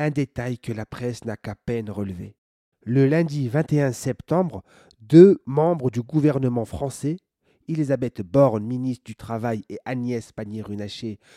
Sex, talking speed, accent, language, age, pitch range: male, 135 wpm, French, French, 30-49, 125-170 Hz